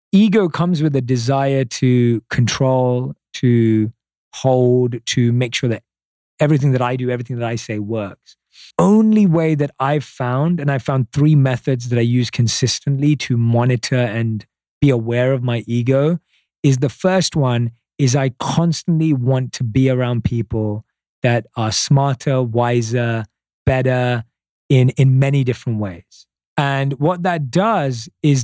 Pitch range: 125-160 Hz